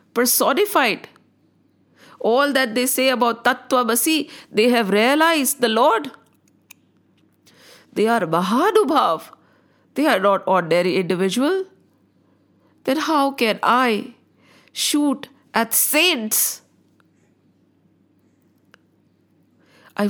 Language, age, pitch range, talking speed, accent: English, 50-69, 220-295 Hz, 85 wpm, Indian